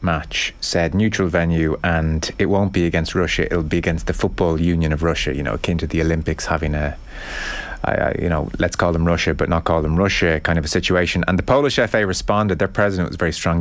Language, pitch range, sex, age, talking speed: English, 85-100 Hz, male, 30-49, 225 wpm